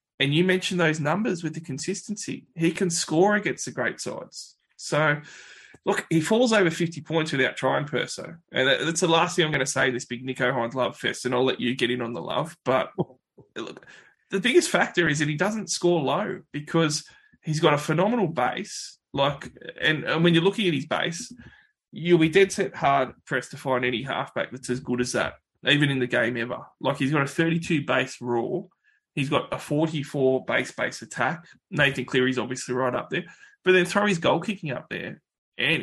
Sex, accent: male, Australian